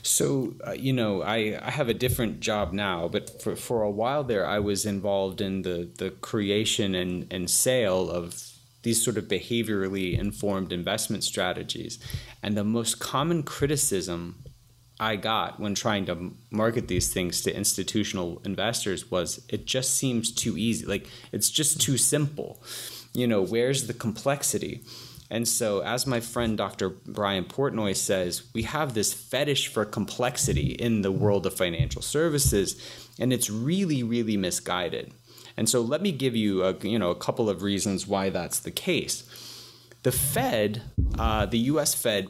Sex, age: male, 30-49